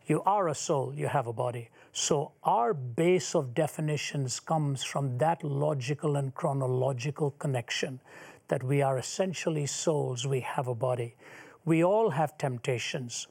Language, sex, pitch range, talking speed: English, male, 135-165 Hz, 150 wpm